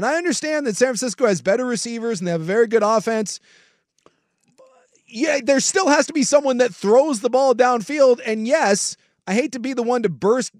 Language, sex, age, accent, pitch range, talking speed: English, male, 30-49, American, 160-235 Hz, 215 wpm